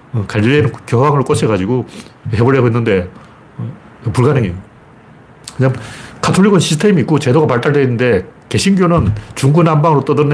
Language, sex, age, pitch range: Korean, male, 40-59, 115-165 Hz